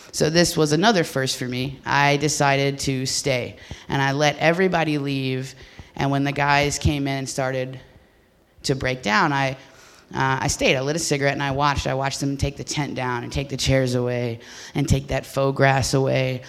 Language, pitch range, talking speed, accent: English, 120-140 Hz, 205 wpm, American